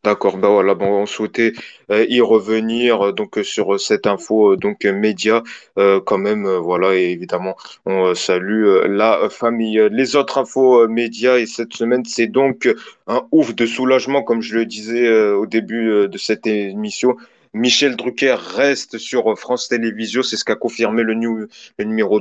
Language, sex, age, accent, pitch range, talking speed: French, male, 20-39, French, 105-120 Hz, 195 wpm